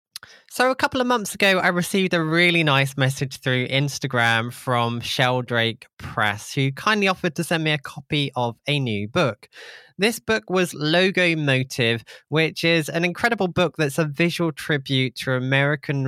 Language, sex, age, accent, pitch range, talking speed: English, male, 20-39, British, 130-175 Hz, 170 wpm